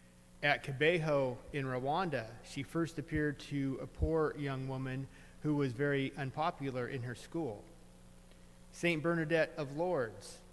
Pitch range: 110-145 Hz